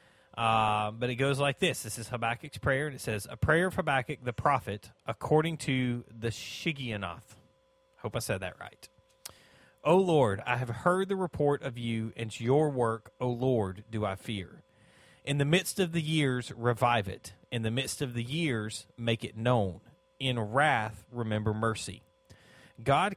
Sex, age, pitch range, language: male, 30-49, 110-150 Hz, English